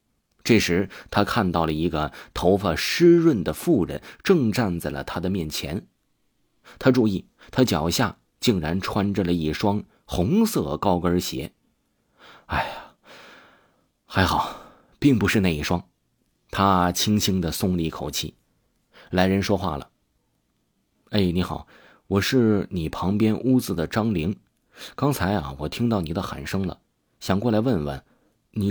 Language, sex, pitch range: Chinese, male, 85-115 Hz